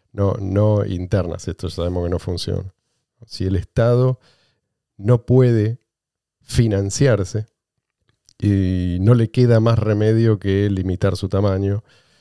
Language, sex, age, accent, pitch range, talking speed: Spanish, male, 40-59, Argentinian, 100-130 Hz, 125 wpm